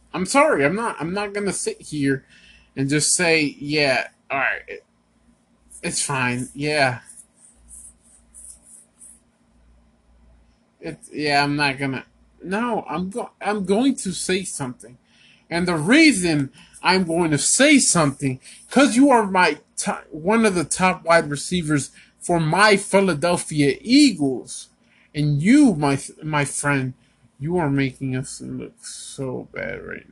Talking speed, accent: 135 wpm, American